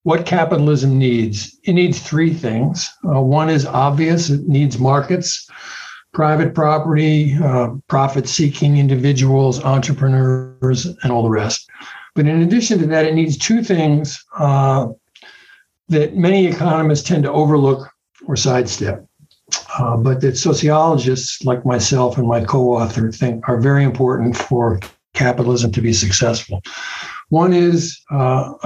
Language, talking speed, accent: English, 130 wpm, American